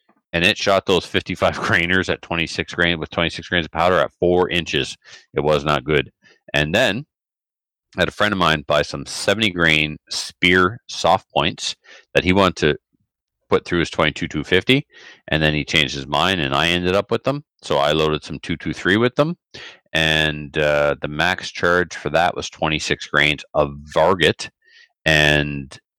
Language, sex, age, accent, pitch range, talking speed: English, male, 40-59, American, 75-90 Hz, 175 wpm